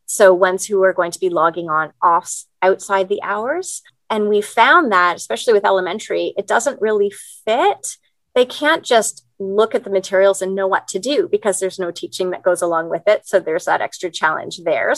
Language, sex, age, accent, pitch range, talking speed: English, female, 30-49, American, 175-215 Hz, 205 wpm